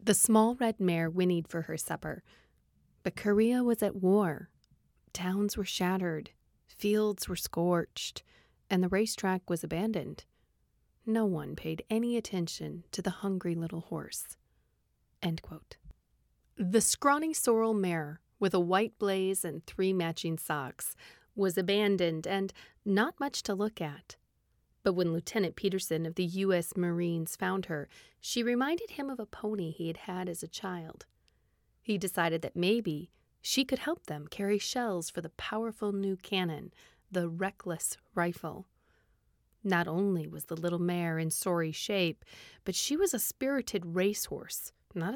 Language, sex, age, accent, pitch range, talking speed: English, female, 30-49, American, 170-210 Hz, 150 wpm